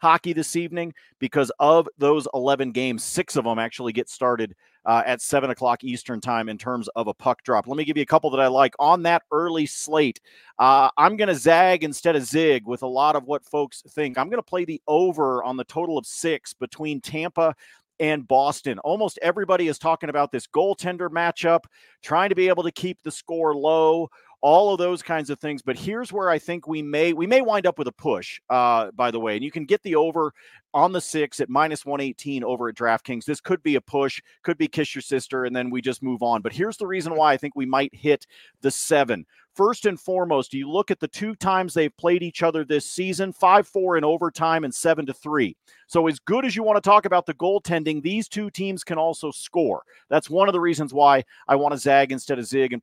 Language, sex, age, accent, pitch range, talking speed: English, male, 40-59, American, 135-170 Hz, 230 wpm